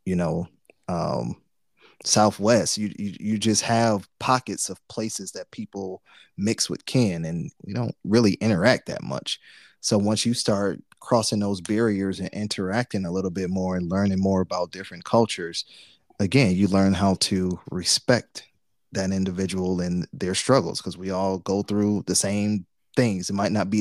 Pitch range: 95-110 Hz